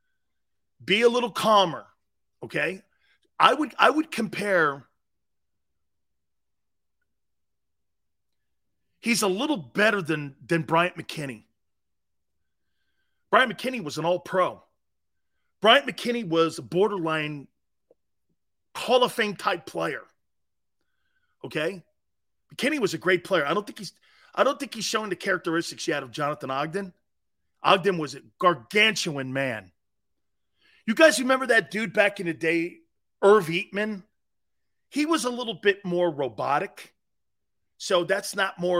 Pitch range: 130-210 Hz